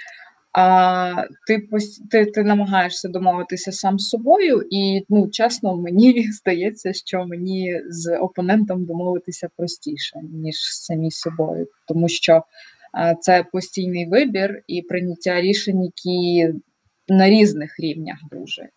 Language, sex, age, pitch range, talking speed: Ukrainian, female, 20-39, 170-205 Hz, 120 wpm